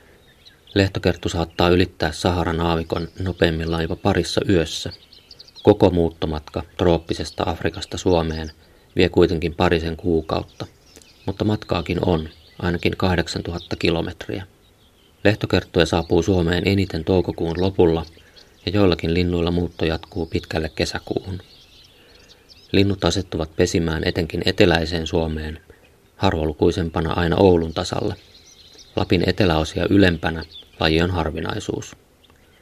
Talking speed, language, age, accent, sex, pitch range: 95 wpm, Finnish, 30-49, native, male, 80-95 Hz